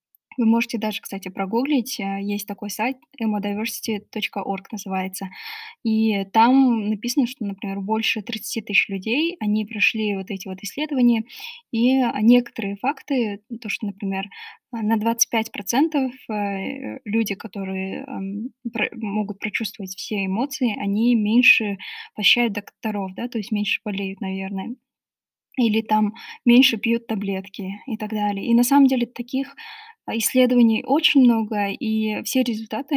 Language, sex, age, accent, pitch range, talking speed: Russian, female, 10-29, native, 205-240 Hz, 125 wpm